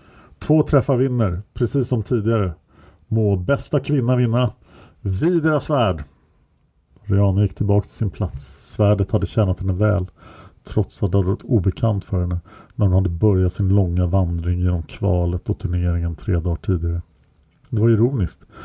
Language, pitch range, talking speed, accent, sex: English, 90-110 Hz, 155 wpm, Norwegian, male